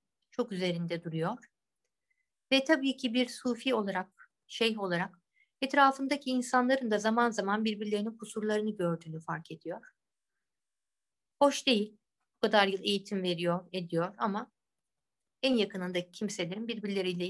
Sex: female